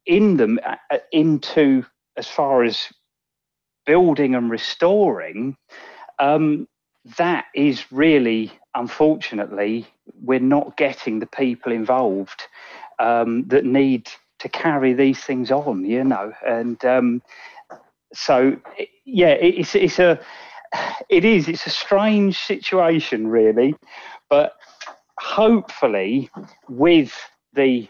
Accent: British